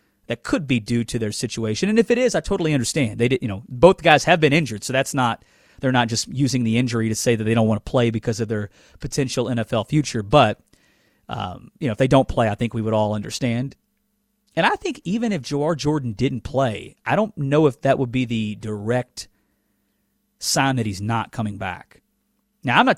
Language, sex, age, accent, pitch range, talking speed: English, male, 40-59, American, 120-160 Hz, 225 wpm